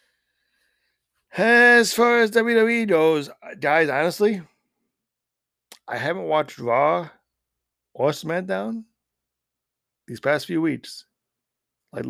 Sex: male